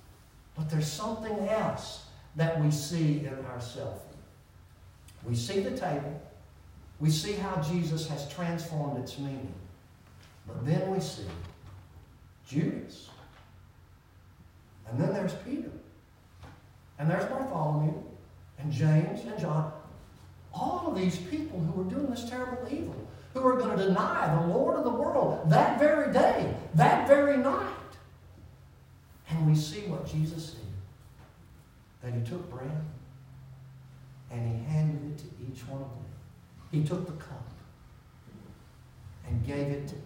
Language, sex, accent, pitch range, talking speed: English, male, American, 115-165 Hz, 135 wpm